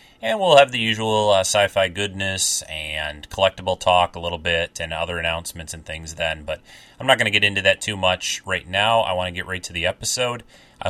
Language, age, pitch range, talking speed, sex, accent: English, 30-49, 85-105 Hz, 225 wpm, male, American